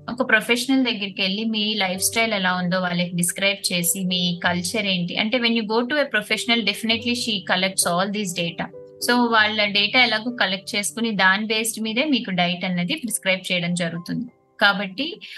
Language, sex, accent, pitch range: Telugu, female, native, 185-225 Hz